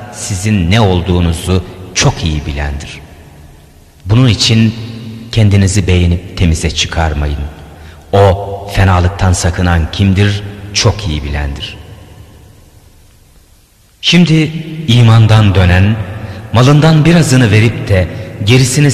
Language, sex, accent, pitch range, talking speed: Turkish, male, native, 85-120 Hz, 85 wpm